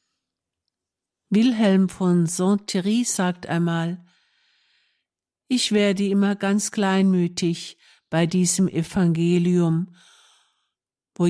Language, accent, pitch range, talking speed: German, German, 170-200 Hz, 80 wpm